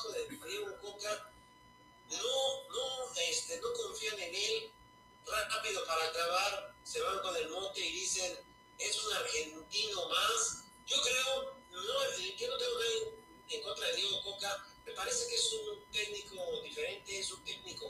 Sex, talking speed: male, 160 wpm